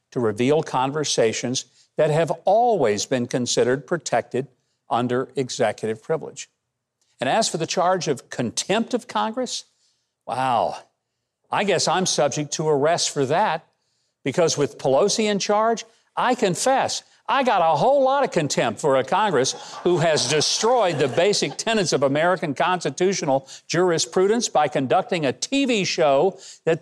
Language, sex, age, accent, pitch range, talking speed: English, male, 50-69, American, 135-200 Hz, 140 wpm